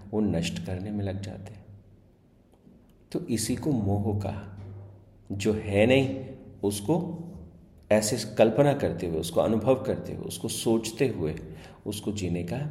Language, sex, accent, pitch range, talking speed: Hindi, male, native, 95-115 Hz, 130 wpm